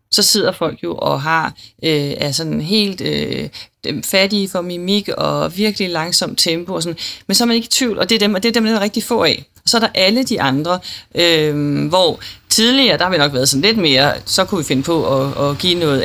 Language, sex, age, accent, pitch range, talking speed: Danish, female, 30-49, native, 145-190 Hz, 255 wpm